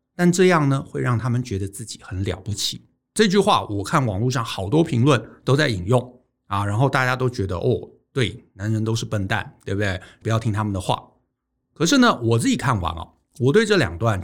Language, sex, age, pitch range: Chinese, male, 60-79, 105-150 Hz